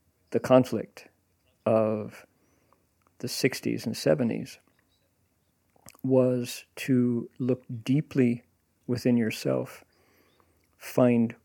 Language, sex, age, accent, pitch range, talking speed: English, male, 50-69, American, 110-130 Hz, 75 wpm